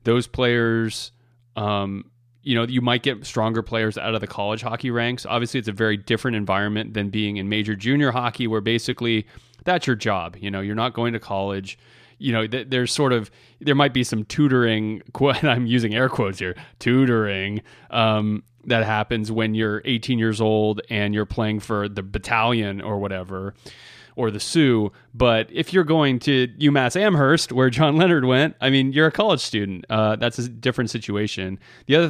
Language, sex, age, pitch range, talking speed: English, male, 30-49, 105-125 Hz, 185 wpm